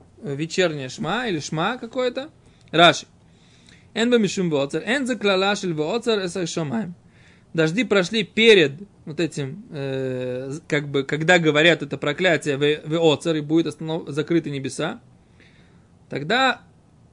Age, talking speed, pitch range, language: 20-39, 95 wpm, 155-215 Hz, Russian